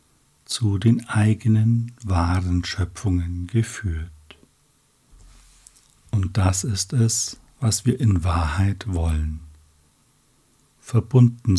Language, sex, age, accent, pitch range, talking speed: German, male, 60-79, German, 90-115 Hz, 85 wpm